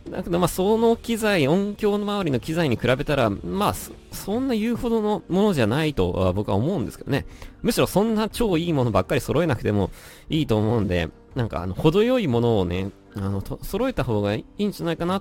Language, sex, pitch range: Japanese, male, 95-140 Hz